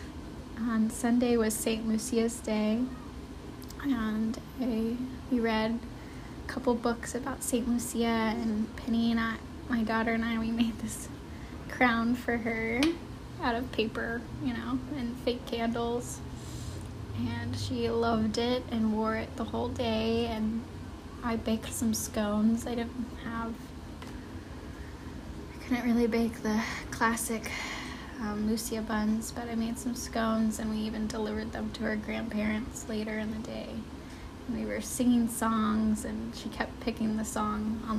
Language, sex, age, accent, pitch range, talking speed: English, female, 10-29, American, 215-240 Hz, 145 wpm